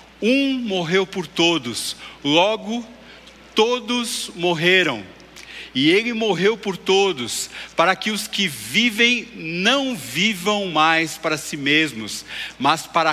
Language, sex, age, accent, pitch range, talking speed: Portuguese, male, 50-69, Brazilian, 160-215 Hz, 115 wpm